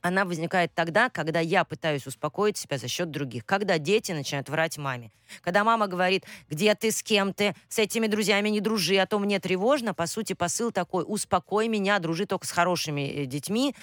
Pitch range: 150-200 Hz